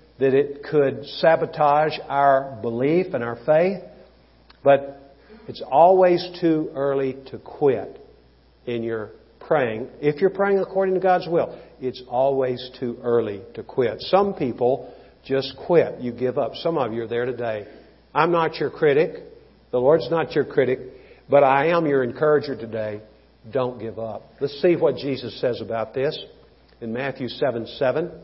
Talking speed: 155 wpm